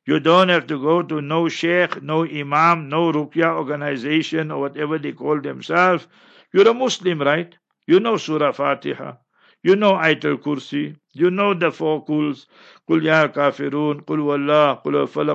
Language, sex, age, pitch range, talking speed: English, male, 60-79, 145-170 Hz, 150 wpm